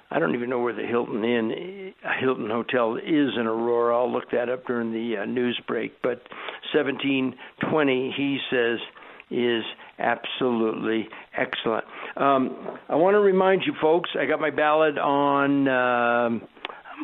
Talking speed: 150 wpm